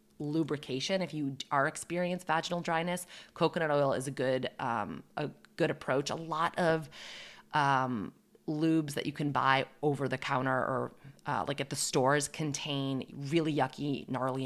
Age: 30-49